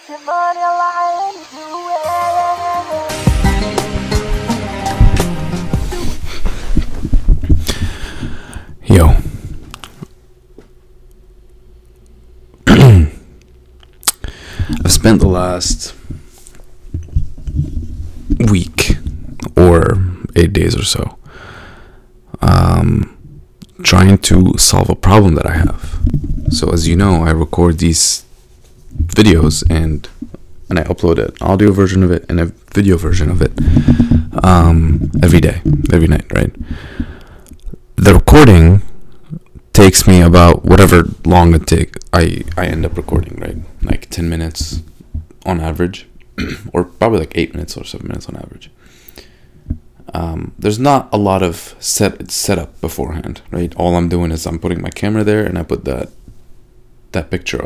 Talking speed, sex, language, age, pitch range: 110 wpm, male, English, 30-49, 80-100 Hz